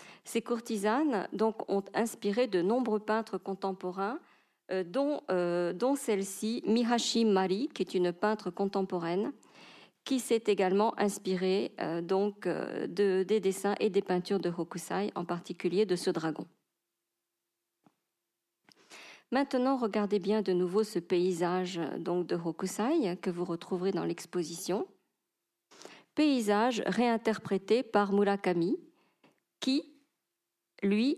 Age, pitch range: 40-59, 180-225 Hz